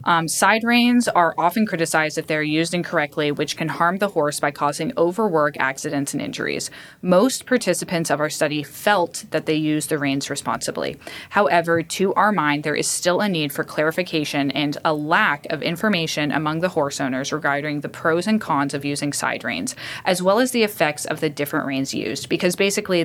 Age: 20-39